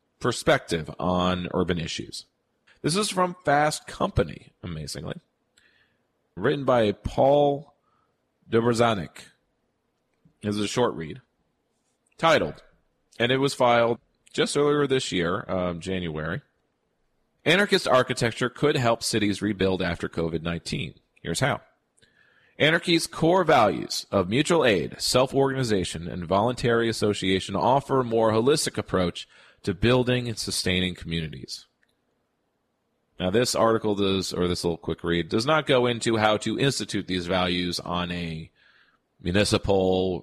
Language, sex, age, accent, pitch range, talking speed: English, male, 40-59, American, 90-120 Hz, 120 wpm